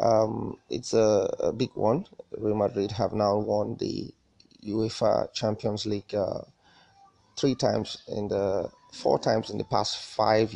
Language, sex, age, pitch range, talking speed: English, male, 30-49, 105-120 Hz, 150 wpm